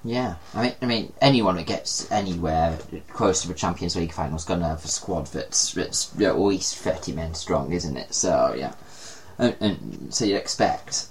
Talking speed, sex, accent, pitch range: 190 wpm, male, British, 90-130 Hz